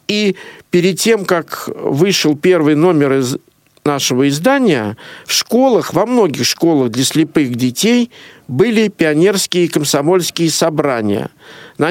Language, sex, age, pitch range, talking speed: Russian, male, 50-69, 145-190 Hz, 115 wpm